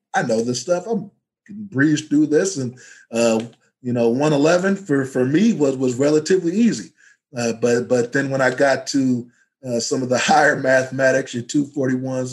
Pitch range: 120-140 Hz